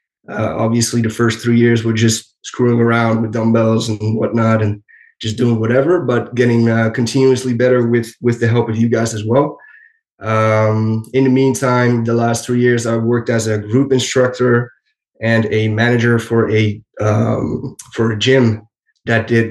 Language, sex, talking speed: English, male, 175 wpm